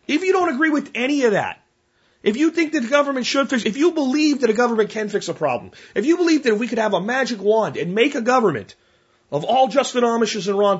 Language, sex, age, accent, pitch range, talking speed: English, male, 30-49, American, 170-250 Hz, 255 wpm